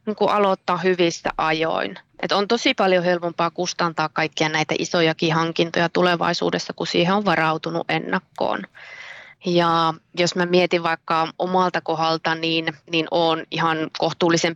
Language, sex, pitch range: Finnish, female, 160-180 Hz